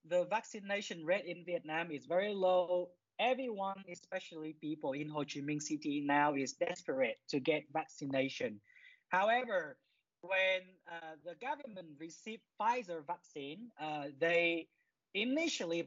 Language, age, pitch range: English, 20-39, 160-220 Hz